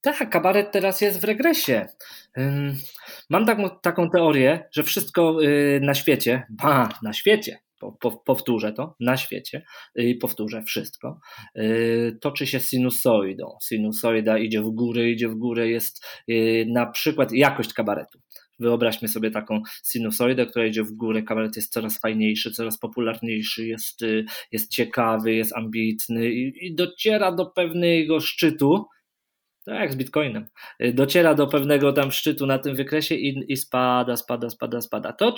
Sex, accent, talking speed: male, native, 135 wpm